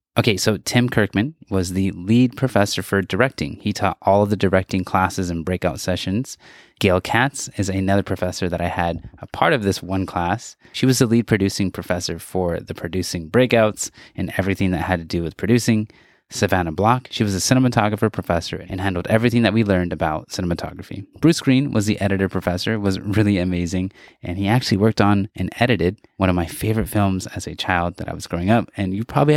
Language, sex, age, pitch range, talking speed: English, male, 20-39, 95-115 Hz, 200 wpm